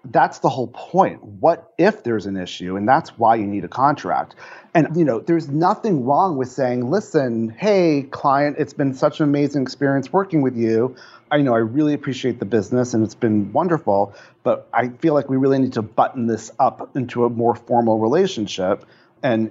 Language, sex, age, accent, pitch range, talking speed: English, male, 40-59, American, 115-150 Hz, 195 wpm